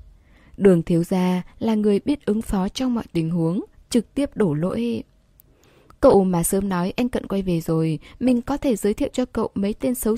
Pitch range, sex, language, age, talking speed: 170-235 Hz, female, Vietnamese, 10-29, 205 wpm